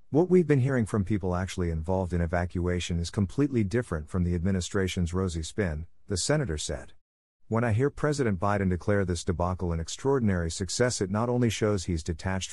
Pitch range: 85-110 Hz